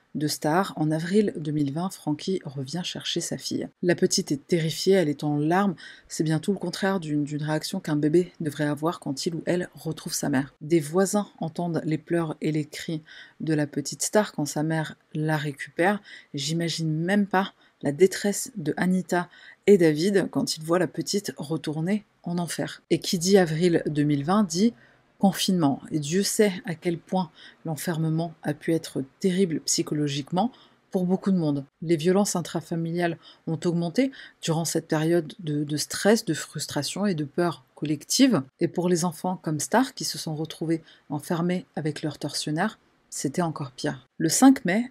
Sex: female